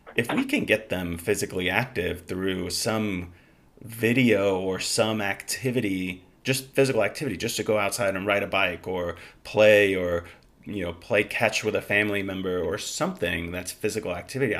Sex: male